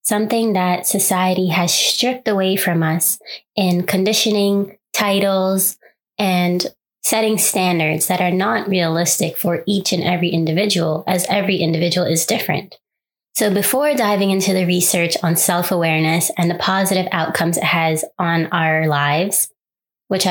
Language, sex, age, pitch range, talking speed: English, female, 20-39, 175-205 Hz, 135 wpm